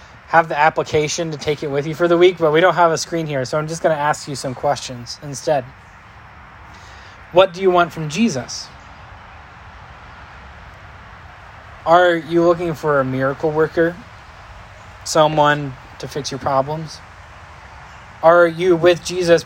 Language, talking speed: English, 155 wpm